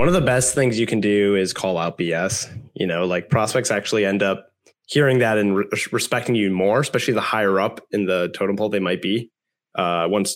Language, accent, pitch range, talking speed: English, American, 110-160 Hz, 225 wpm